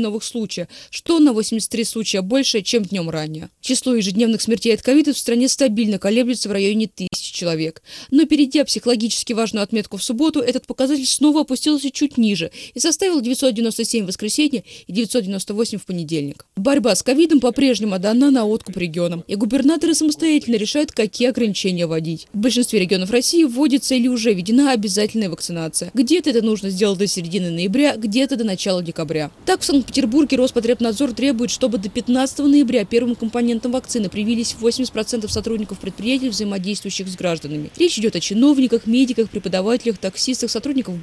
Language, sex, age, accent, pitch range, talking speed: Russian, female, 20-39, native, 200-260 Hz, 160 wpm